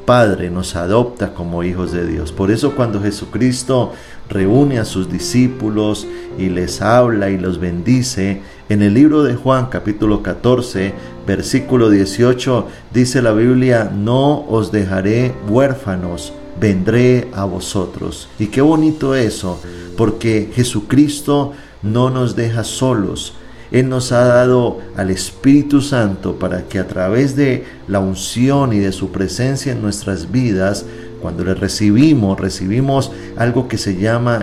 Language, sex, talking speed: Spanish, male, 140 wpm